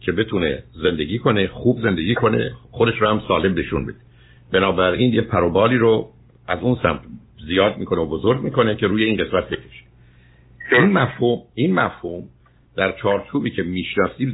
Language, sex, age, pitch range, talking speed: Persian, male, 60-79, 95-120 Hz, 160 wpm